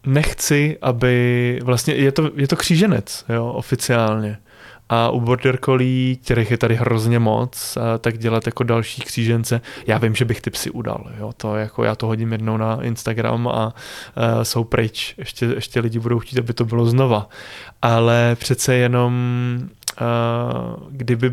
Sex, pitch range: male, 115-125 Hz